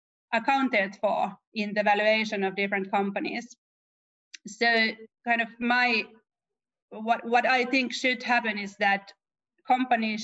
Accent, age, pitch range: Finnish, 30-49, 205-235 Hz